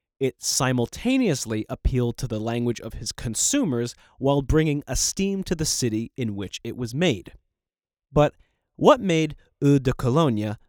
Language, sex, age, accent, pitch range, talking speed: English, male, 30-49, American, 110-155 Hz, 145 wpm